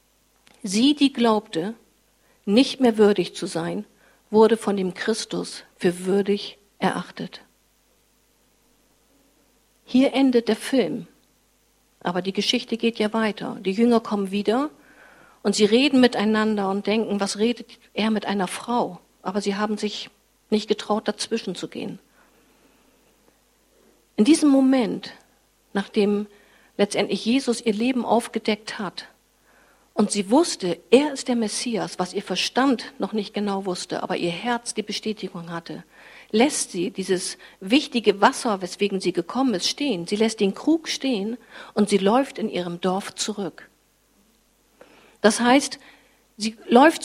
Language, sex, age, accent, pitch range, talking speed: German, female, 50-69, German, 200-250 Hz, 135 wpm